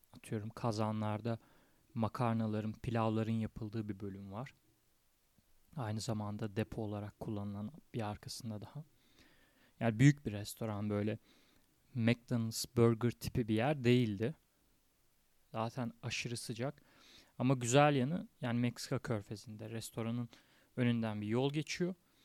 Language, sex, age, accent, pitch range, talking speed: Turkish, male, 30-49, native, 110-130 Hz, 110 wpm